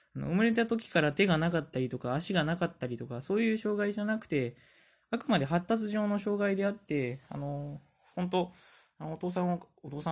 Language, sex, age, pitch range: Japanese, male, 20-39, 130-180 Hz